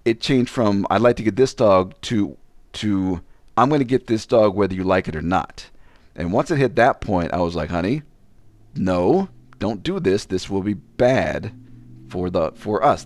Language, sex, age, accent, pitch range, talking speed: English, male, 40-59, American, 90-120 Hz, 205 wpm